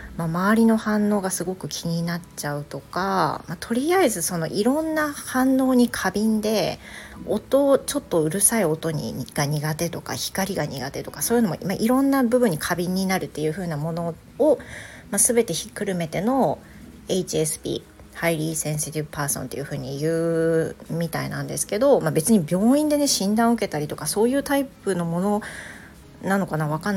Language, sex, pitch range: Japanese, female, 155-215 Hz